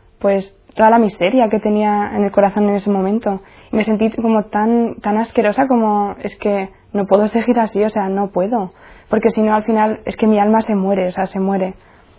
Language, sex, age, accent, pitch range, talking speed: Spanish, female, 20-39, Spanish, 200-235 Hz, 220 wpm